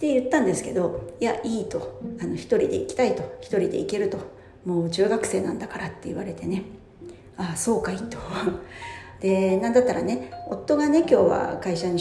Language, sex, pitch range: Japanese, female, 175-260 Hz